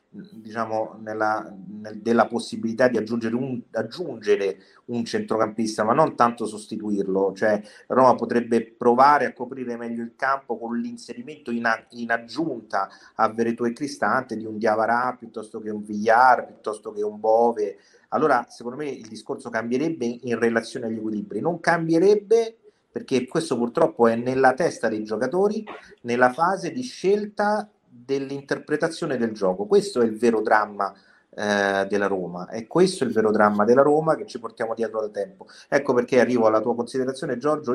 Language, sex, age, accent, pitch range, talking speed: Italian, male, 30-49, native, 110-155 Hz, 155 wpm